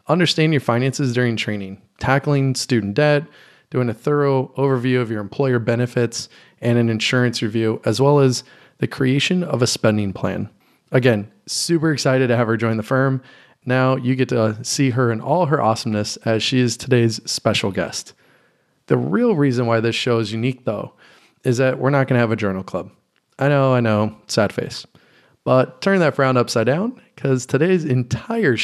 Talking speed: 185 wpm